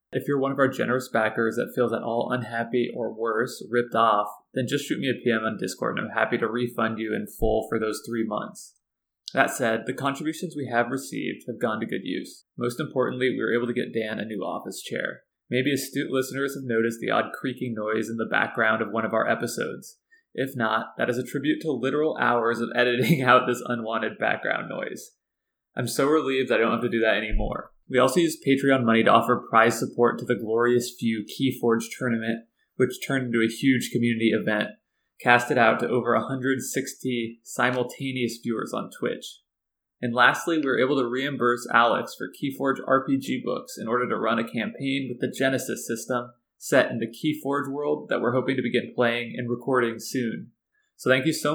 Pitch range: 115-135 Hz